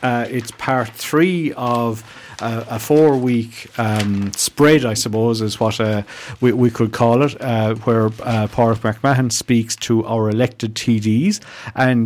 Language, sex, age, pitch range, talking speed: English, male, 50-69, 110-130 Hz, 150 wpm